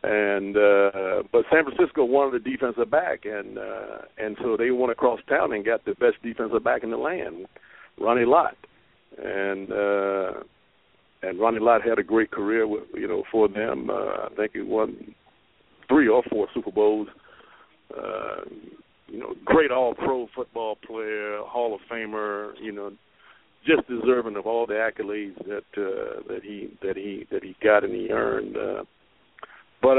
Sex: male